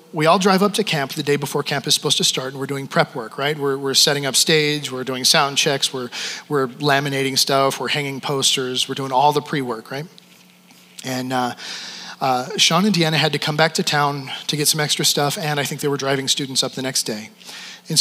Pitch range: 135-165 Hz